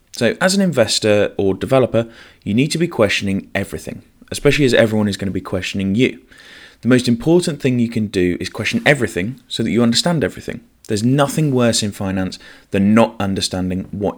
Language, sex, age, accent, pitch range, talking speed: English, male, 20-39, British, 100-120 Hz, 190 wpm